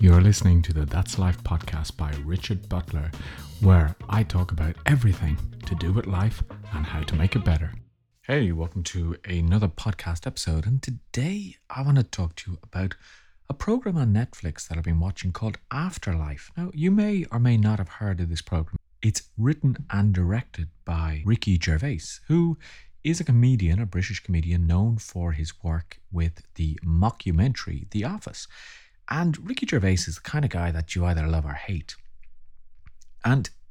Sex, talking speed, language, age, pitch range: male, 175 wpm, English, 40-59, 85-115 Hz